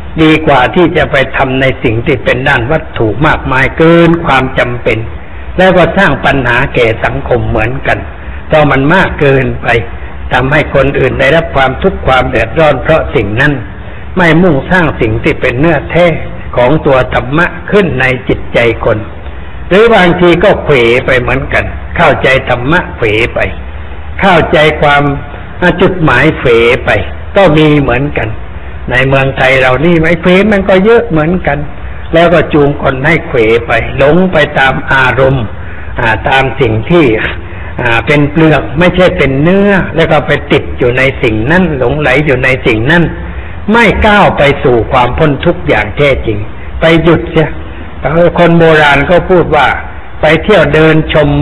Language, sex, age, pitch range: Thai, male, 60-79, 120-170 Hz